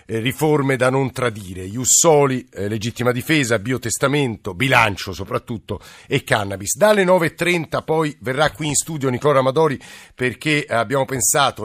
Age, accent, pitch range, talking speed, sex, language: 50-69, native, 110-135 Hz, 130 wpm, male, Italian